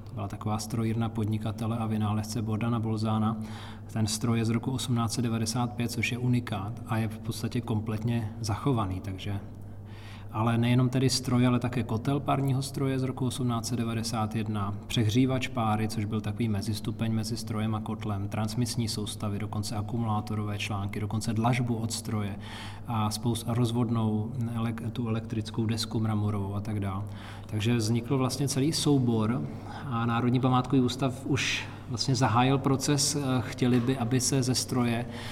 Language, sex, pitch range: Czech, male, 110-120 Hz